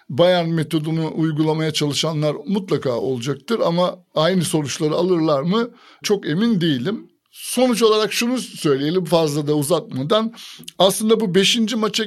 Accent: native